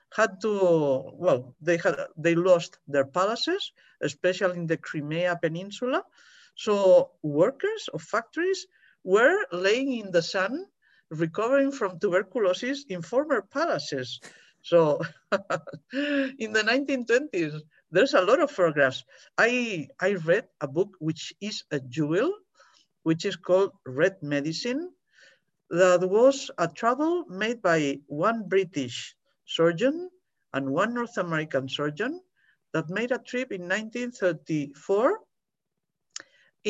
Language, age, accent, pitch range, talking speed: English, 50-69, Spanish, 150-235 Hz, 120 wpm